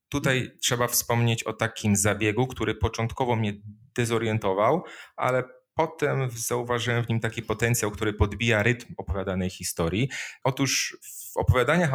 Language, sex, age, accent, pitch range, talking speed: Polish, male, 30-49, native, 105-125 Hz, 125 wpm